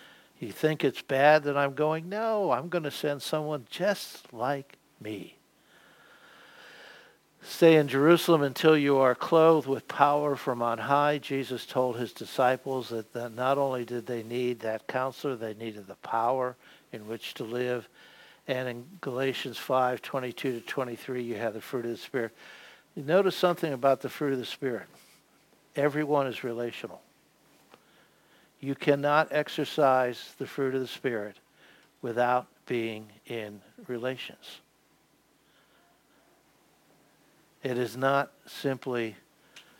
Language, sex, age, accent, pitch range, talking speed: English, male, 60-79, American, 125-150 Hz, 135 wpm